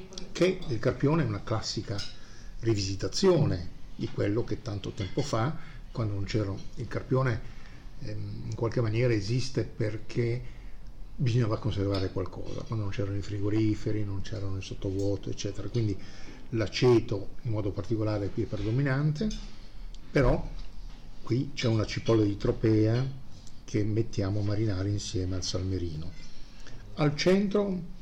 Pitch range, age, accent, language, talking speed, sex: 100-125 Hz, 50-69, native, Italian, 130 wpm, male